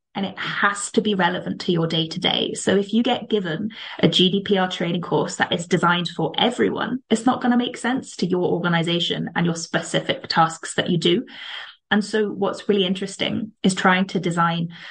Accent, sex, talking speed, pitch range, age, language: British, female, 200 wpm, 170-200 Hz, 20-39, English